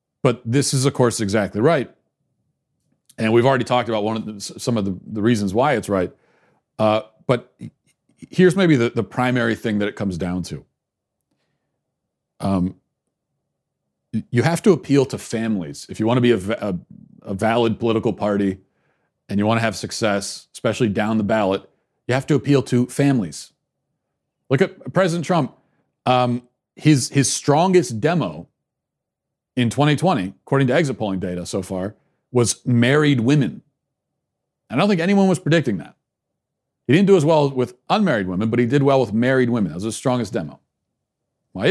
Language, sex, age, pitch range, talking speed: English, male, 40-59, 110-140 Hz, 170 wpm